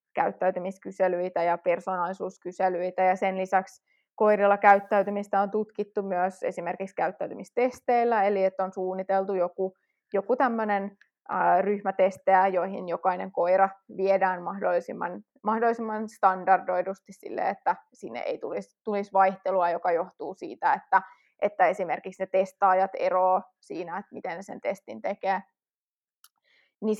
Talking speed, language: 115 wpm, Finnish